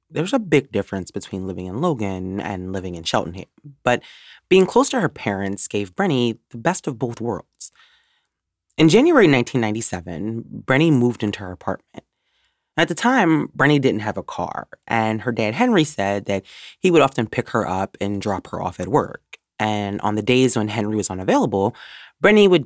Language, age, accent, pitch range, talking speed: English, 30-49, American, 100-135 Hz, 185 wpm